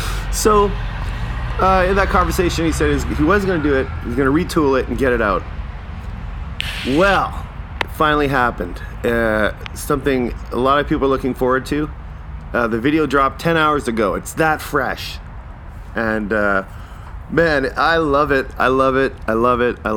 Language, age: English, 30-49